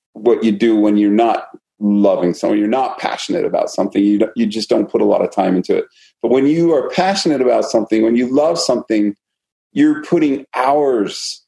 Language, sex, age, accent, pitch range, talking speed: English, male, 40-59, American, 105-125 Hz, 225 wpm